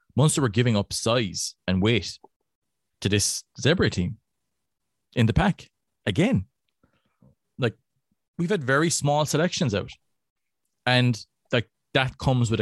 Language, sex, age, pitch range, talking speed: English, male, 30-49, 100-130 Hz, 135 wpm